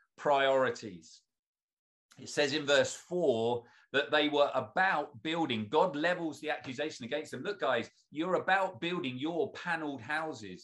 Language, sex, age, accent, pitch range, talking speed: English, male, 40-59, British, 110-165 Hz, 140 wpm